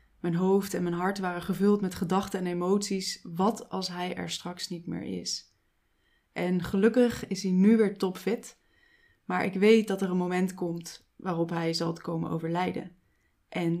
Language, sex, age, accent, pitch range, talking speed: Dutch, female, 20-39, Dutch, 170-195 Hz, 175 wpm